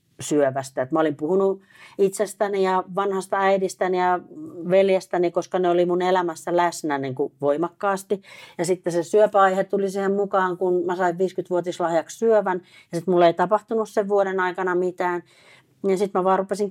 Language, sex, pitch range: Finnish, female, 140-185 Hz